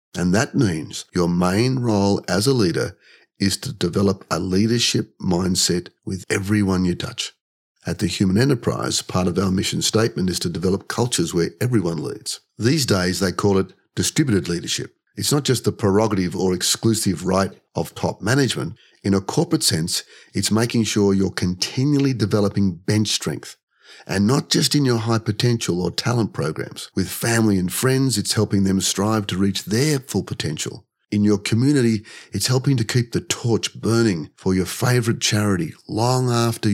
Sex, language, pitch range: male, English, 95-115 Hz